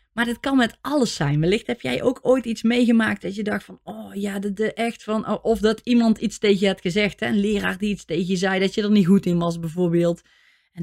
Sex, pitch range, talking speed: female, 165-210 Hz, 265 wpm